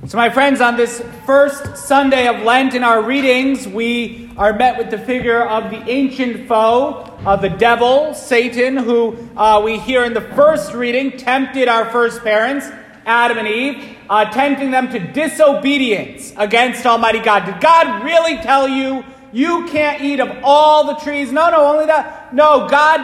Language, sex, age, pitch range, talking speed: English, male, 30-49, 225-280 Hz, 175 wpm